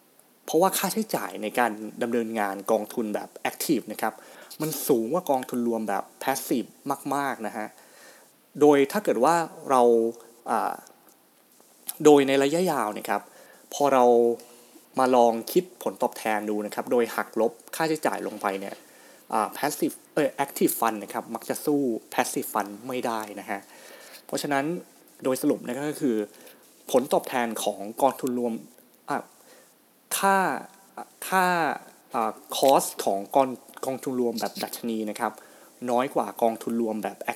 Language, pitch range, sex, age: Thai, 110-150 Hz, male, 20-39